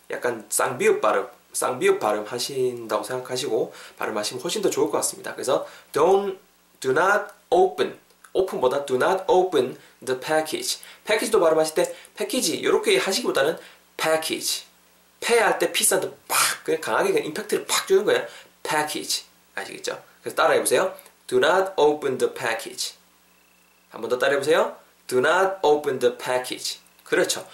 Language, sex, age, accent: Korean, male, 20-39, native